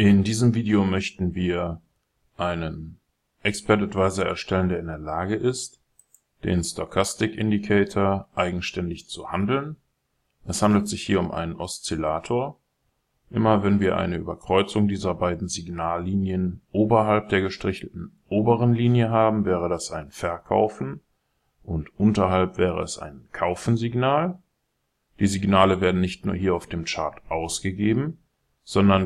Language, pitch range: German, 90-110 Hz